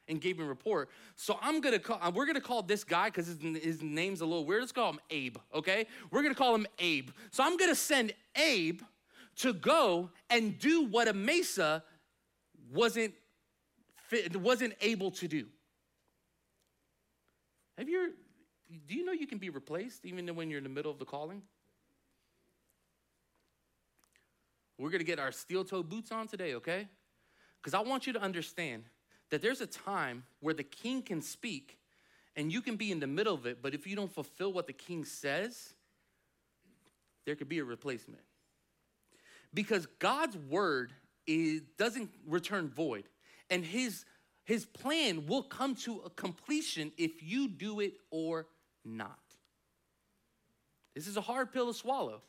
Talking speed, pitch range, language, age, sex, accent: 160 wpm, 160-235 Hz, English, 30-49, male, American